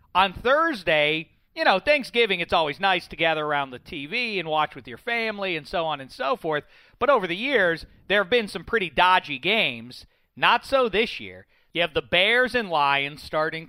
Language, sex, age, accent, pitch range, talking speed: English, male, 40-59, American, 120-160 Hz, 200 wpm